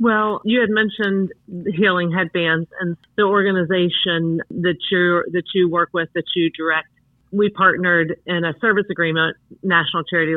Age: 40-59